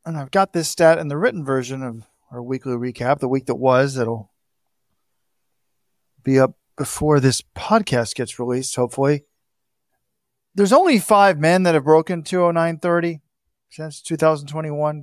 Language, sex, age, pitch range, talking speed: English, male, 40-59, 145-200 Hz, 140 wpm